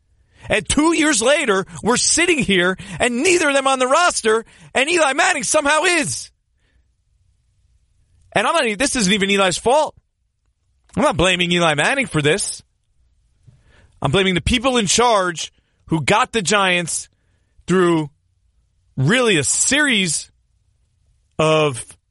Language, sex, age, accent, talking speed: English, male, 30-49, American, 135 wpm